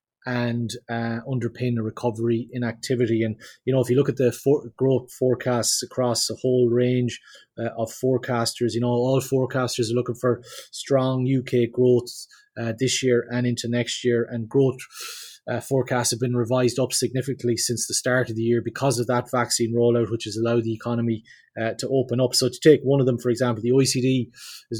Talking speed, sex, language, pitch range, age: 200 wpm, male, English, 120-130 Hz, 20-39